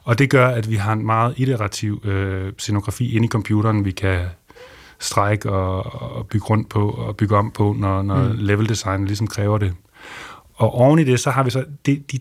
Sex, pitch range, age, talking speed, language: male, 100-120 Hz, 30-49, 205 wpm, Danish